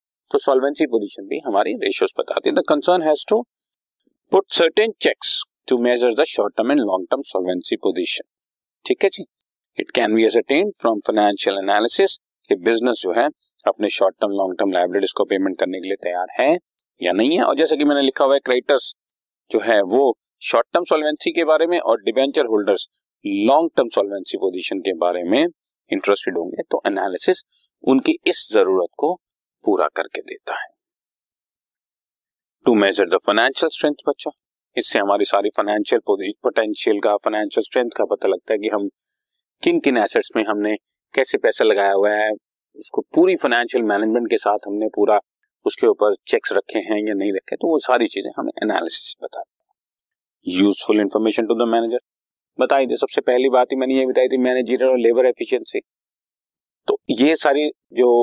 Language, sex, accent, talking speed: Hindi, male, native, 135 wpm